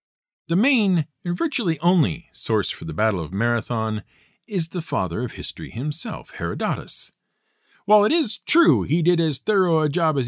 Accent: American